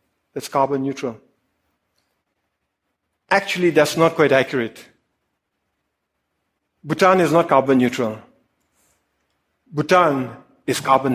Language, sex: English, male